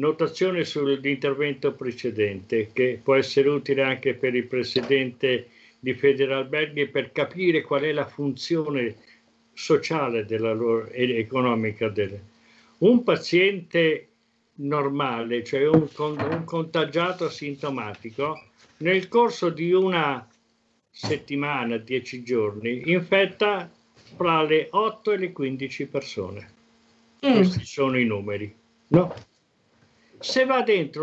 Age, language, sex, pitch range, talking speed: 50-69, Italian, male, 120-170 Hz, 110 wpm